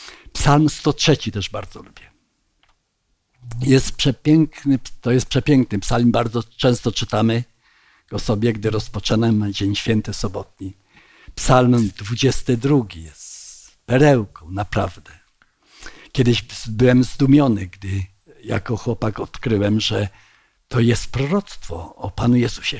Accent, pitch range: native, 105-135 Hz